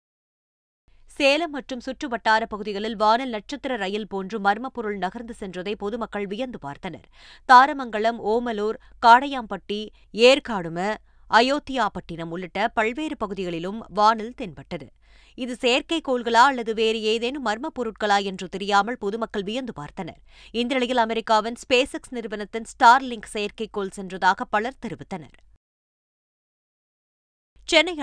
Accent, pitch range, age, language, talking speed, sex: native, 205-245 Hz, 20-39, Tamil, 105 wpm, female